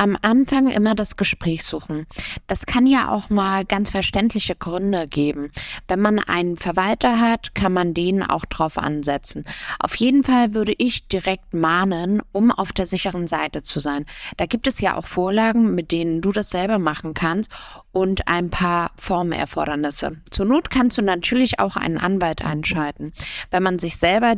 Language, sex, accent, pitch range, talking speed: German, female, German, 175-220 Hz, 170 wpm